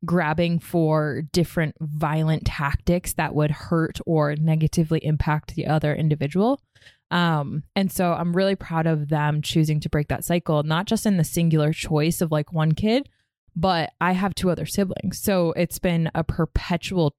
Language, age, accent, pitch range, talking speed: English, 20-39, American, 155-190 Hz, 170 wpm